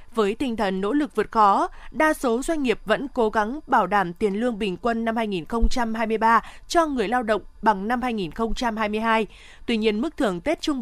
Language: Vietnamese